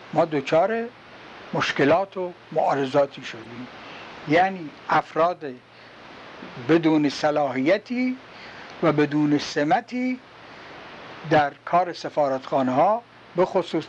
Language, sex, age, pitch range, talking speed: Persian, male, 60-79, 150-210 Hz, 80 wpm